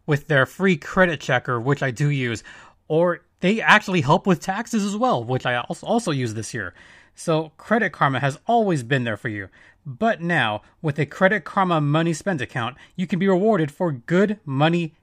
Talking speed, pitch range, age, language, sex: 190 wpm, 135-190 Hz, 30-49, English, male